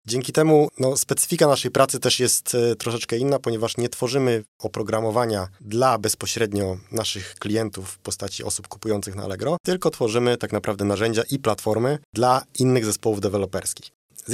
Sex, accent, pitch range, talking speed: male, native, 105-125 Hz, 145 wpm